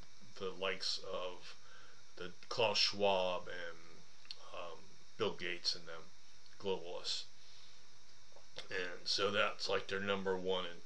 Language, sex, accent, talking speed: English, male, American, 115 wpm